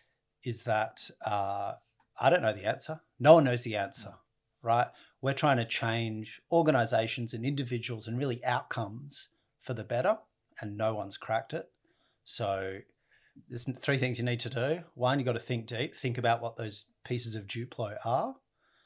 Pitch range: 105-125 Hz